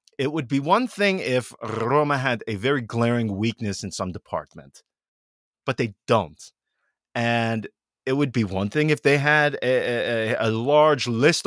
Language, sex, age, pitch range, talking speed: English, male, 30-49, 105-155 Hz, 160 wpm